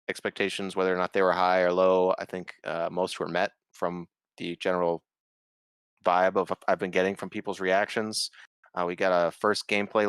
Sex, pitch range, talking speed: male, 90-110 Hz, 190 wpm